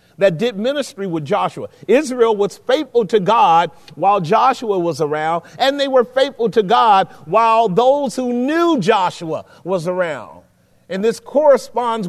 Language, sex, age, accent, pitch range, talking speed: English, male, 40-59, American, 185-235 Hz, 150 wpm